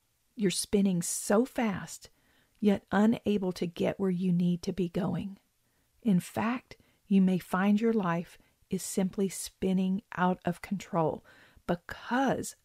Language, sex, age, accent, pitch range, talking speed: English, female, 40-59, American, 185-225 Hz, 135 wpm